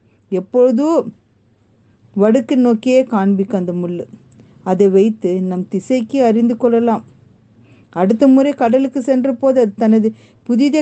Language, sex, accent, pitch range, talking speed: Tamil, female, native, 190-250 Hz, 110 wpm